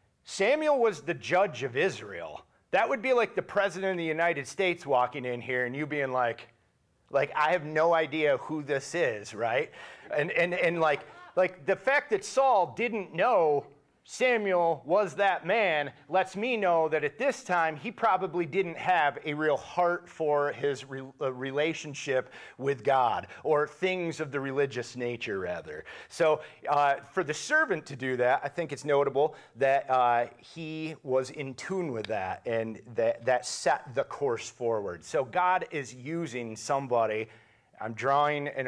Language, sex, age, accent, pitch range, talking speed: English, male, 40-59, American, 130-180 Hz, 170 wpm